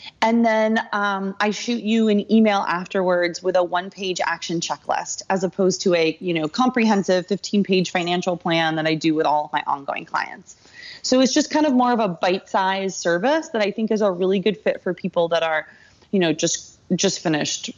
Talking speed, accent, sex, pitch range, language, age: 205 wpm, American, female, 170-220 Hz, English, 30-49